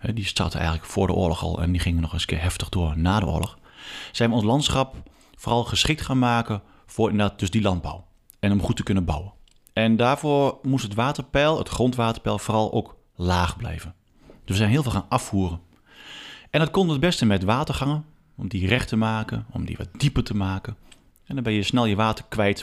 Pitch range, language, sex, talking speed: 90-120 Hz, Dutch, male, 215 wpm